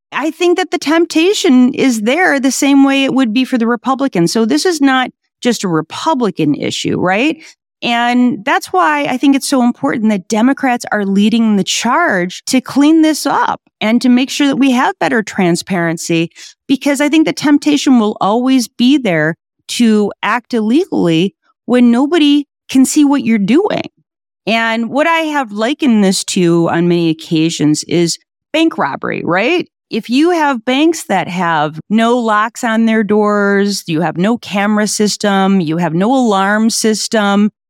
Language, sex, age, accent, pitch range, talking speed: English, female, 40-59, American, 195-280 Hz, 170 wpm